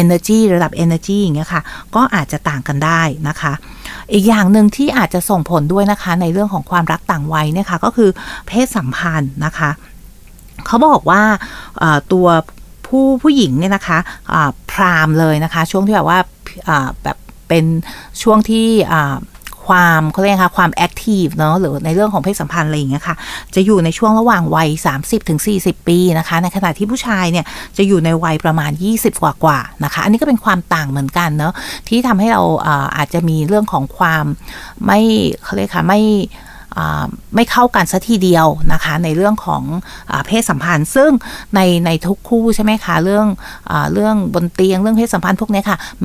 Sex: female